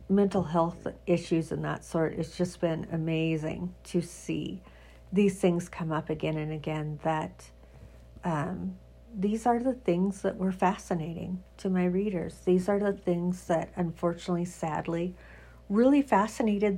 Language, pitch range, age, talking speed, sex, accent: English, 165-200 Hz, 50-69, 145 wpm, female, American